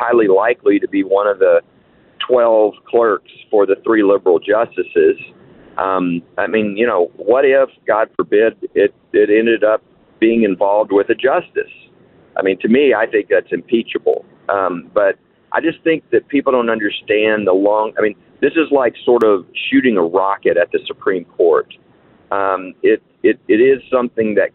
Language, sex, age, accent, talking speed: English, male, 50-69, American, 175 wpm